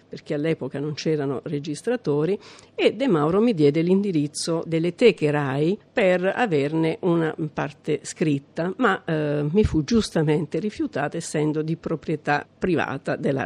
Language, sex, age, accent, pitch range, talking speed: Italian, female, 50-69, native, 150-190 Hz, 135 wpm